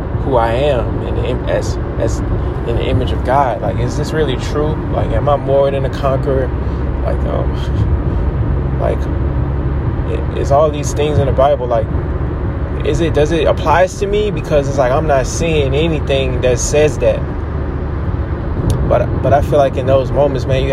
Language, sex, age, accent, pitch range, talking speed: English, male, 20-39, American, 95-140 Hz, 185 wpm